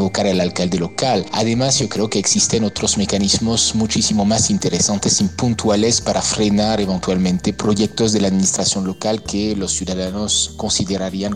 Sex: male